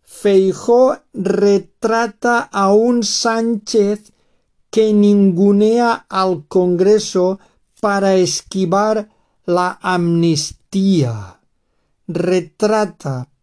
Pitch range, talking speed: 165-200 Hz, 60 wpm